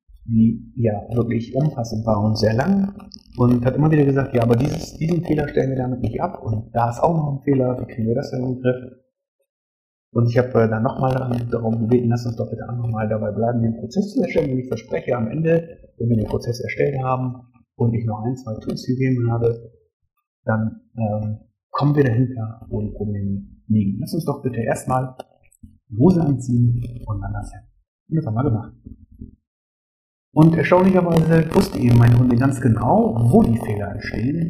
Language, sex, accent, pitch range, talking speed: German, male, German, 110-140 Hz, 195 wpm